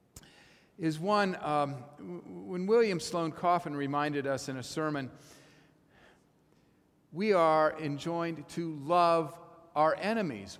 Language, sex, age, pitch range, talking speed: English, male, 50-69, 145-170 Hz, 110 wpm